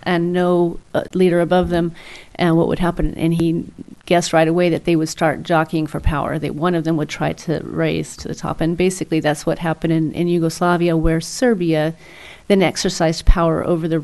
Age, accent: 40-59, American